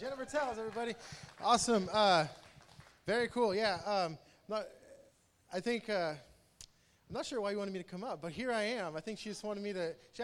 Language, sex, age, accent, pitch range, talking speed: English, male, 20-39, American, 180-230 Hz, 195 wpm